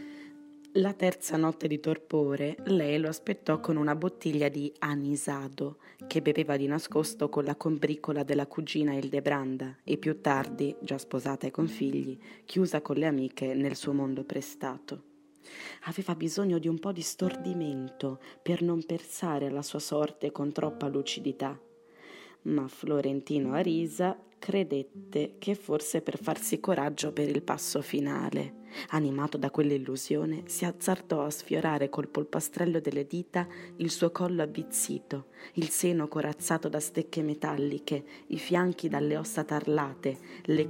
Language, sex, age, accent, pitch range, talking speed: Italian, female, 20-39, native, 140-165 Hz, 140 wpm